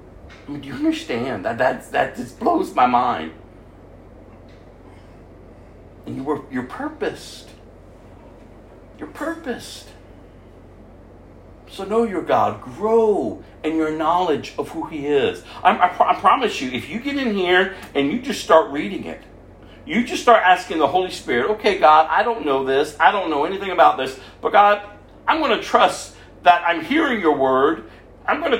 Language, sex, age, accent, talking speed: English, male, 50-69, American, 170 wpm